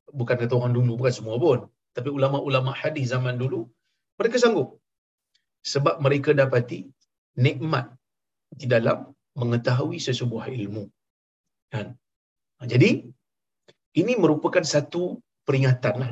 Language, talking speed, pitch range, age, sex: Malayalam, 105 wpm, 120-180 Hz, 50-69, male